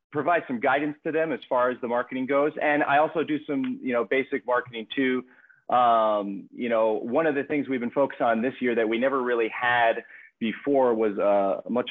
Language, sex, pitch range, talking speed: English, male, 115-135 Hz, 215 wpm